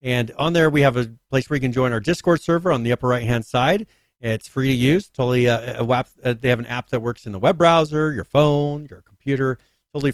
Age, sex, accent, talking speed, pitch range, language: 40-59, male, American, 255 wpm, 115-140 Hz, English